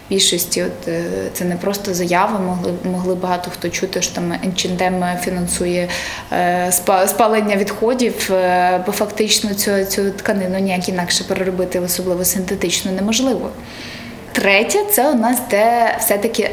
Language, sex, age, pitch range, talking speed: Ukrainian, female, 20-39, 190-230 Hz, 130 wpm